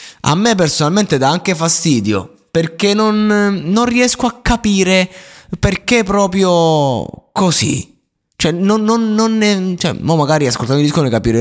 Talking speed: 145 wpm